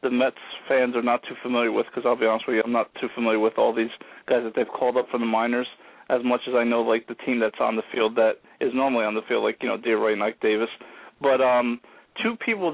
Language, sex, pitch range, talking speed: English, male, 120-140 Hz, 270 wpm